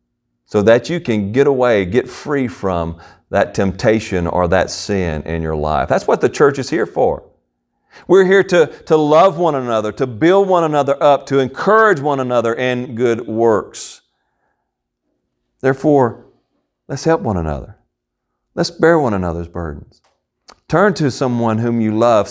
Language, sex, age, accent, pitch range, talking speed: English, male, 40-59, American, 90-120 Hz, 160 wpm